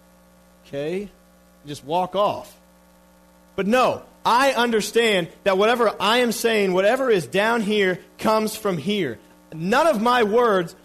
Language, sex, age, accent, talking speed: English, male, 40-59, American, 140 wpm